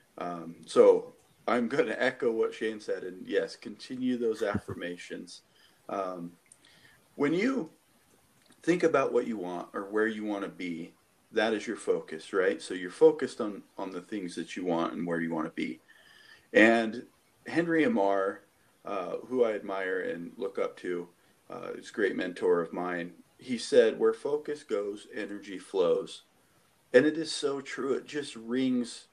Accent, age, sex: American, 40-59, male